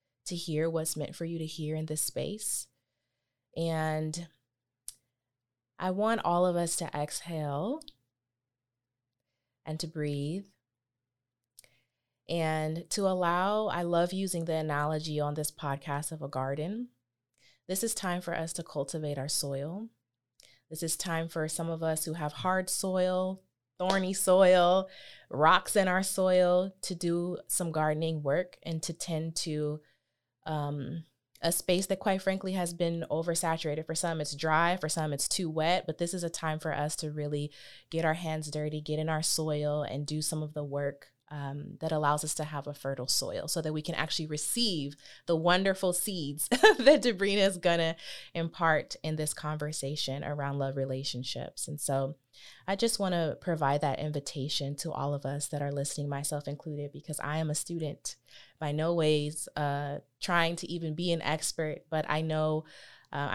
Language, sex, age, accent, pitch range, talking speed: English, female, 20-39, American, 145-170 Hz, 170 wpm